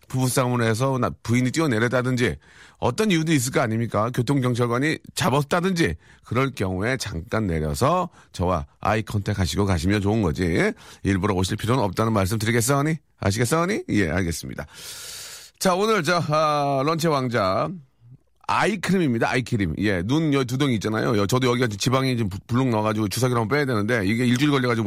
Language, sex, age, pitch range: Korean, male, 40-59, 105-145 Hz